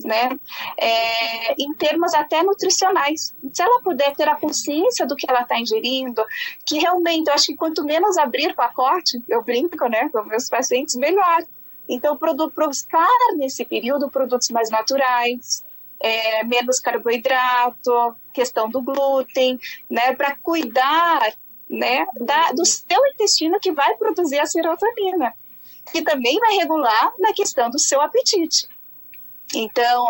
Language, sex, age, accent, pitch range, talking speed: Portuguese, female, 30-49, Brazilian, 245-325 Hz, 140 wpm